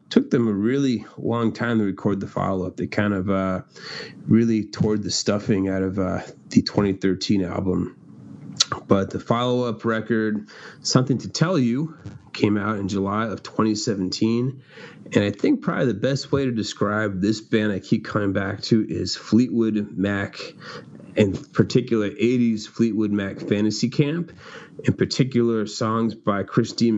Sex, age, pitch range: male, 30-49, 100-120 Hz